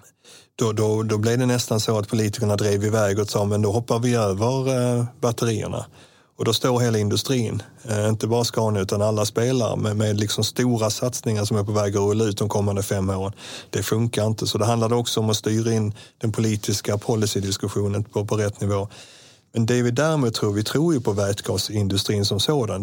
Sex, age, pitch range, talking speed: male, 30-49, 105-125 Hz, 205 wpm